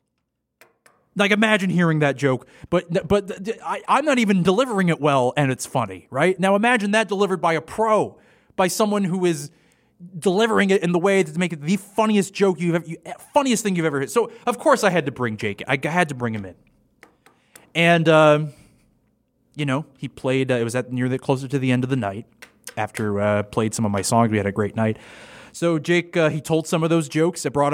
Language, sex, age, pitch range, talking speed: English, male, 20-39, 120-175 Hz, 220 wpm